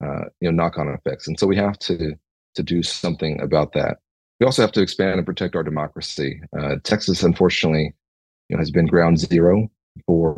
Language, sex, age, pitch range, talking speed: English, male, 30-49, 80-95 Hz, 195 wpm